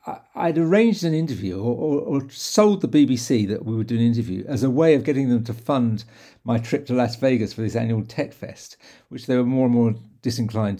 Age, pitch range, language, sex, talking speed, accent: 60-79, 110-135 Hz, English, male, 230 wpm, British